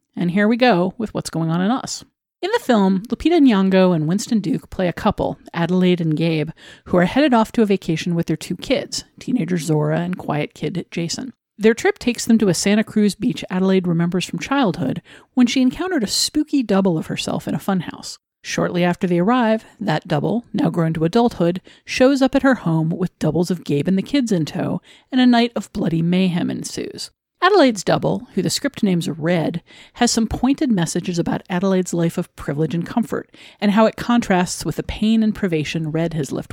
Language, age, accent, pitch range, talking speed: English, 40-59, American, 165-240 Hz, 205 wpm